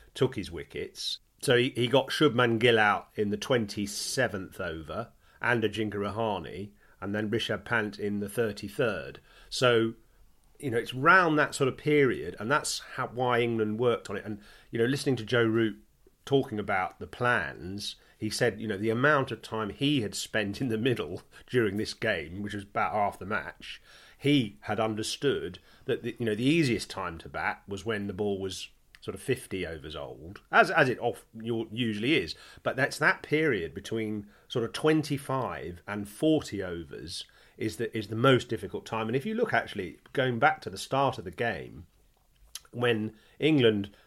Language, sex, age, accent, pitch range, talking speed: English, male, 40-59, British, 105-125 Hz, 185 wpm